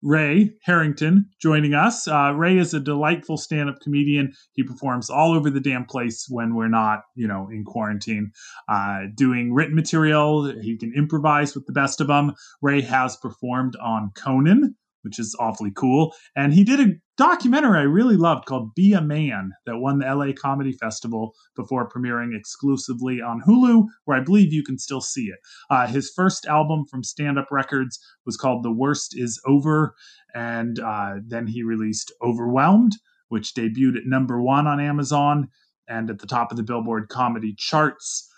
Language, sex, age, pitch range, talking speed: English, male, 30-49, 125-160 Hz, 180 wpm